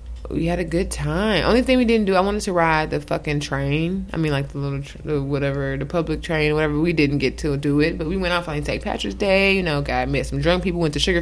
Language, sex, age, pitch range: English, female, 20-39, 140-185 Hz